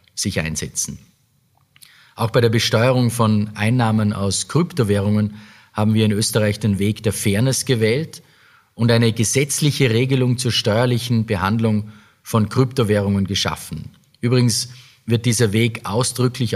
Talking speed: 125 wpm